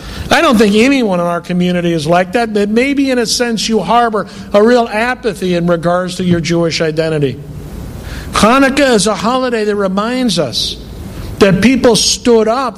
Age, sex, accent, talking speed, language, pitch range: 60-79, male, American, 175 wpm, English, 170-230 Hz